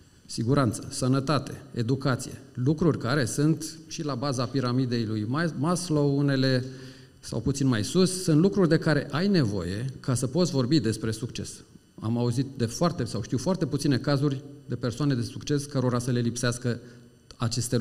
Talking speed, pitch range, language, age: 160 wpm, 120-145 Hz, Romanian, 40-59